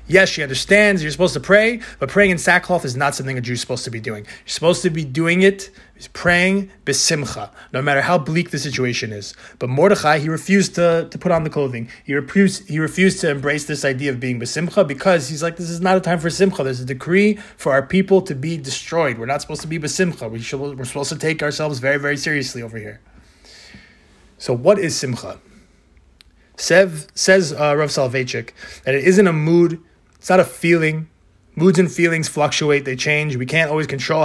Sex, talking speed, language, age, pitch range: male, 210 wpm, English, 20-39, 135-180 Hz